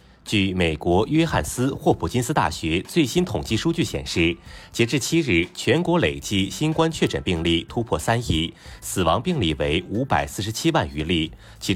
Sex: male